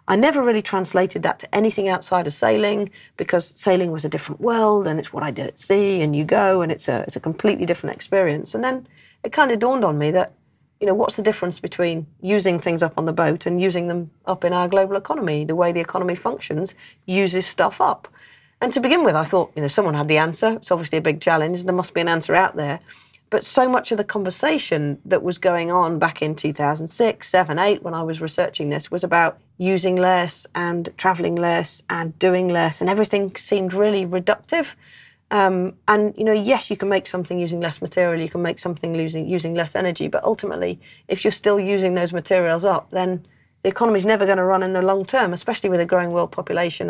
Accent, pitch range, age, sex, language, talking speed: British, 170-200 Hz, 40-59, female, English, 225 wpm